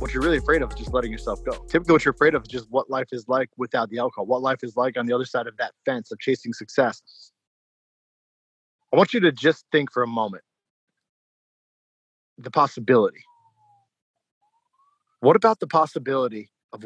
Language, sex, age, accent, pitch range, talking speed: English, male, 30-49, American, 120-155 Hz, 190 wpm